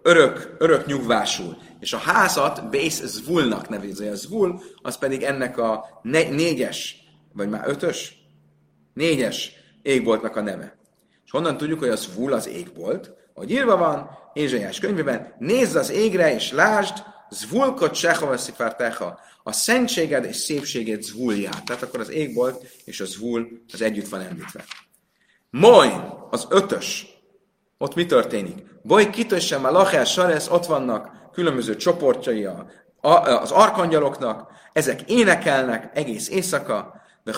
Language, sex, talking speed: Hungarian, male, 130 wpm